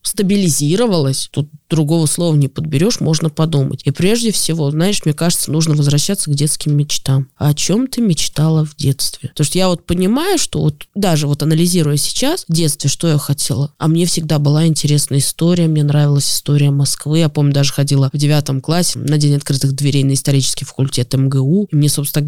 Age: 20-39